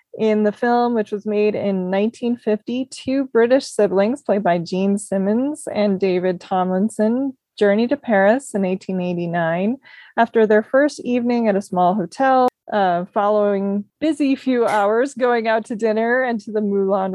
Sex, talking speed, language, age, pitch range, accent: female, 155 wpm, English, 20-39, 200-245 Hz, American